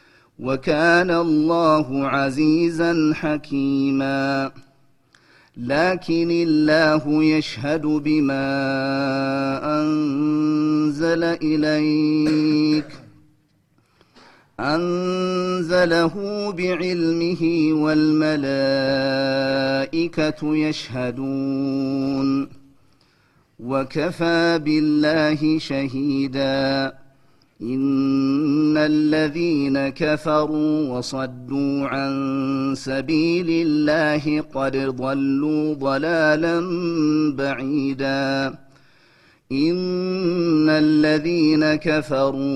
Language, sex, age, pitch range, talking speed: Amharic, male, 40-59, 135-155 Hz, 45 wpm